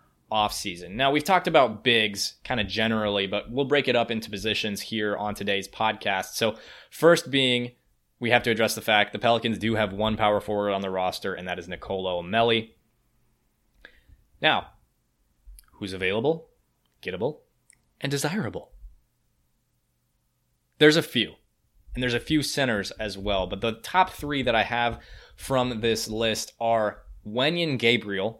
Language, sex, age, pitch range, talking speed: English, male, 20-39, 100-120 Hz, 155 wpm